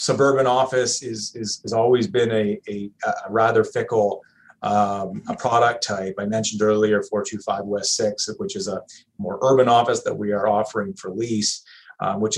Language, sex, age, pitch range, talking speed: English, male, 30-49, 105-130 Hz, 175 wpm